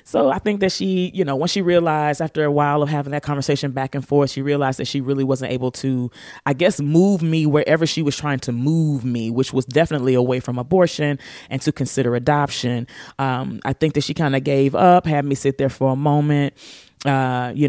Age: 30-49